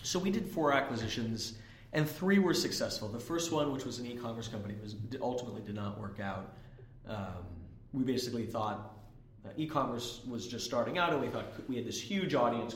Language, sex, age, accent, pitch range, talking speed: English, male, 30-49, American, 115-140 Hz, 185 wpm